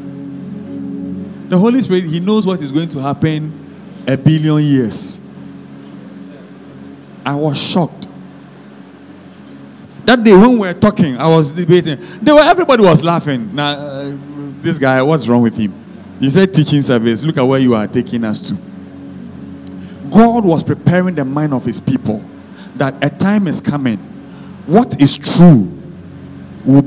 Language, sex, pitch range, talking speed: English, male, 120-185 Hz, 150 wpm